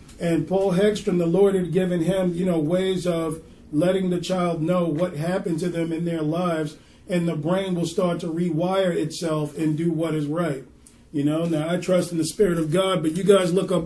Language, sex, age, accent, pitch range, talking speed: English, male, 40-59, American, 150-175 Hz, 220 wpm